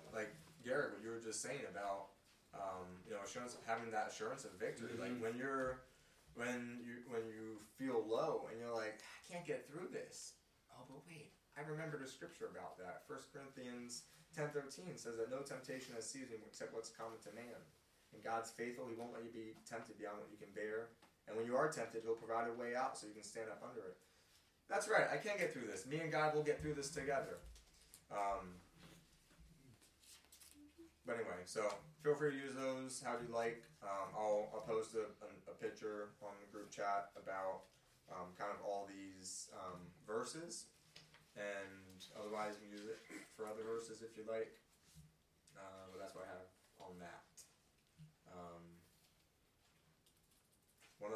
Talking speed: 185 wpm